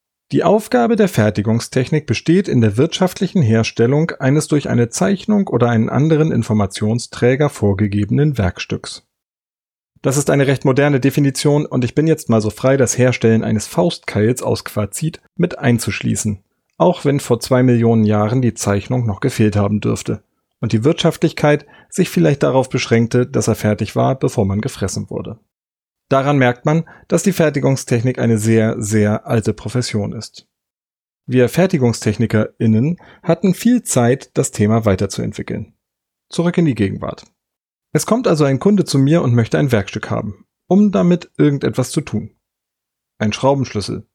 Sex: male